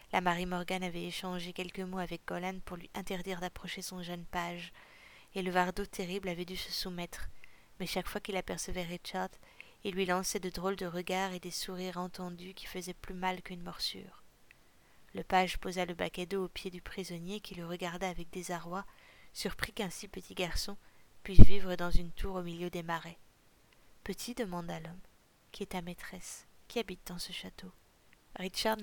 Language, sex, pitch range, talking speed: French, female, 180-195 Hz, 185 wpm